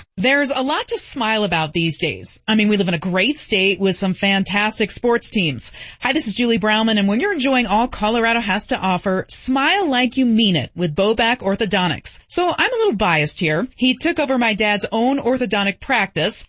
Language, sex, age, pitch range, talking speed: English, female, 30-49, 190-255 Hz, 210 wpm